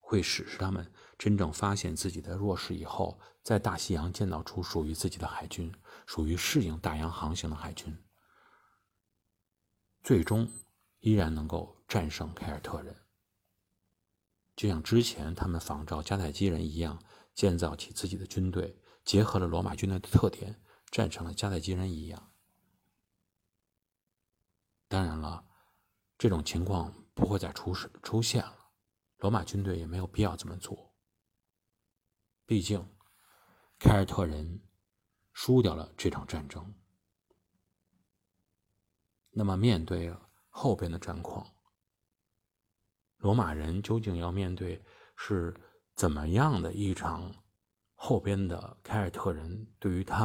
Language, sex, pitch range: Chinese, male, 85-100 Hz